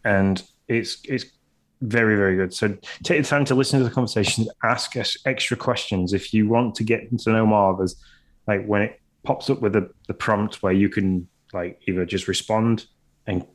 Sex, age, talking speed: male, 20-39, 205 wpm